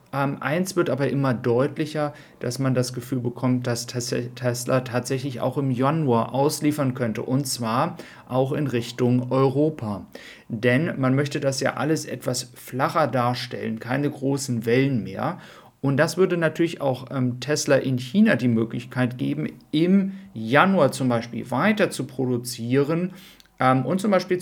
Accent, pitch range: German, 125-150 Hz